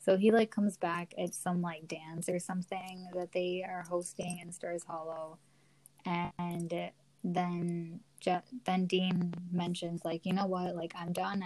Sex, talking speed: female, 155 wpm